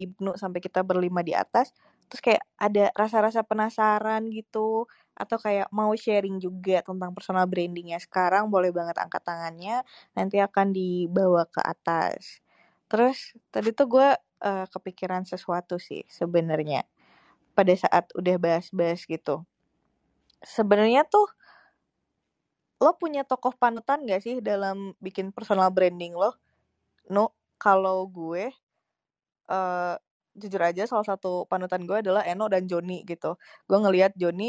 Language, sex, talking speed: Indonesian, female, 130 wpm